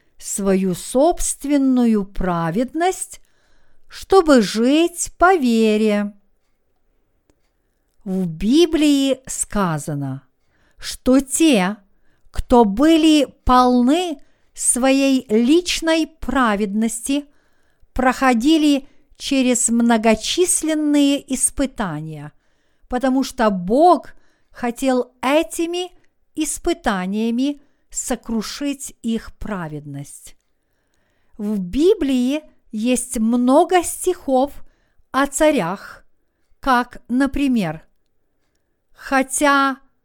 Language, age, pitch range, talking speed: Russian, 50-69, 225-290 Hz, 60 wpm